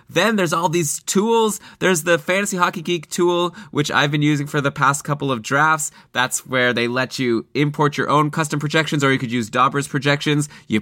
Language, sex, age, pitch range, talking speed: English, male, 20-39, 120-150 Hz, 210 wpm